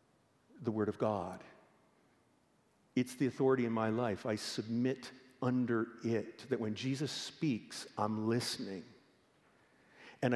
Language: English